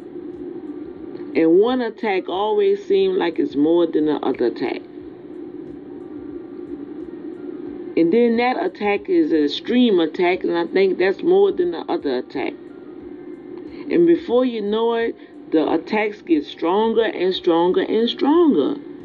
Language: English